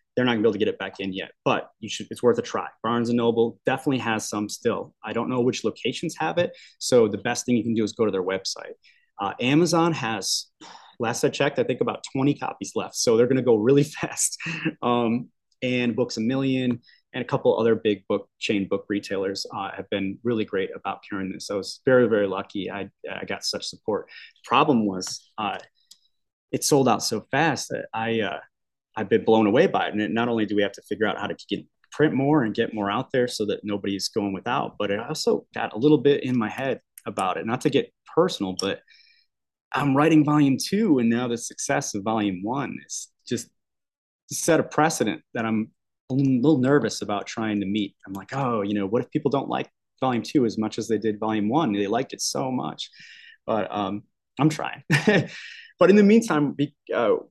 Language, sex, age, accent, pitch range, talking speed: English, male, 20-39, American, 105-135 Hz, 220 wpm